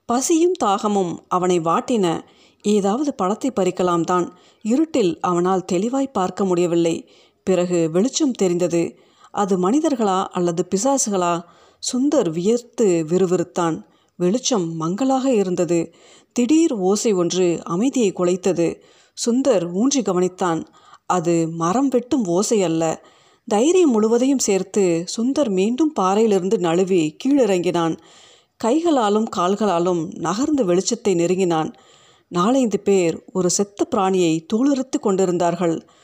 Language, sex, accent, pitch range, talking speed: Tamil, female, native, 175-245 Hz, 95 wpm